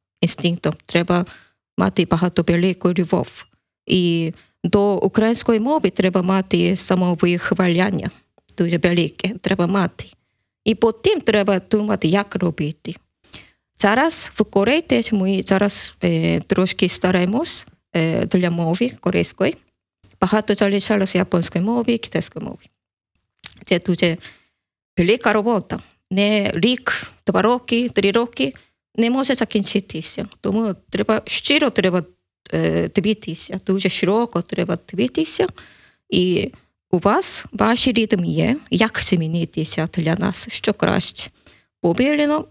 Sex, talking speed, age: female, 110 wpm, 20-39